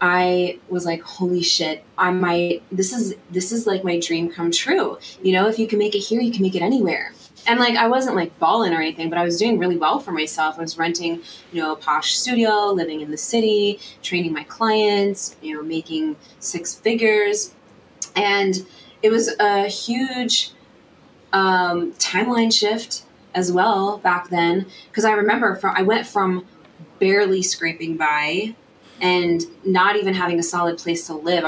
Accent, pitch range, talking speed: American, 175-210 Hz, 185 wpm